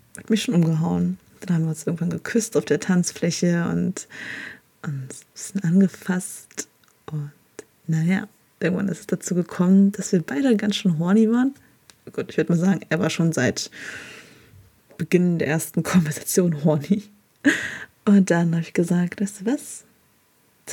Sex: female